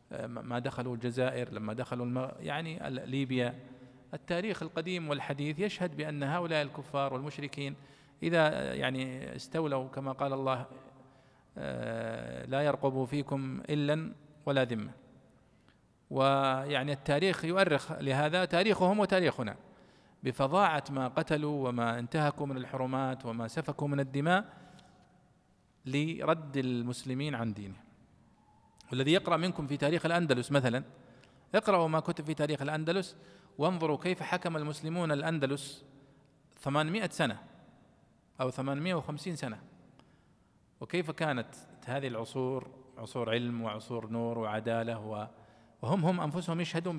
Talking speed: 105 wpm